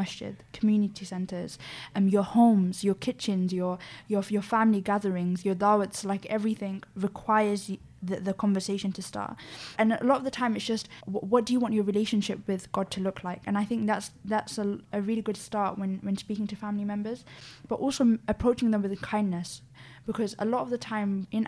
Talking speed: 210 wpm